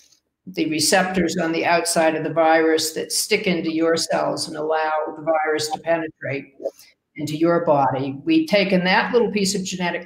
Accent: American